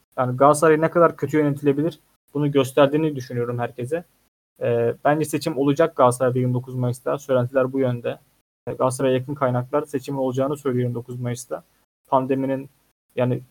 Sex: male